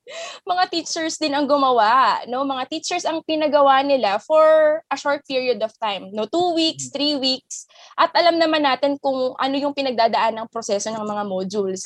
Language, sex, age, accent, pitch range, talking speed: Filipino, female, 20-39, native, 215-275 Hz, 175 wpm